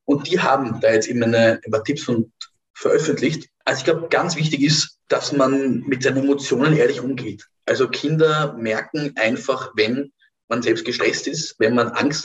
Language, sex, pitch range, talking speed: German, male, 125-165 Hz, 175 wpm